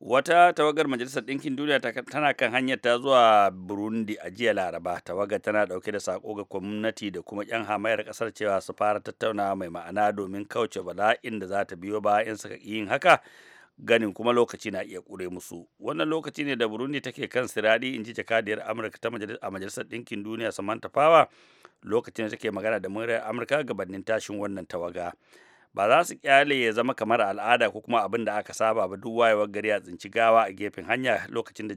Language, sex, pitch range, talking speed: English, male, 105-120 Hz, 170 wpm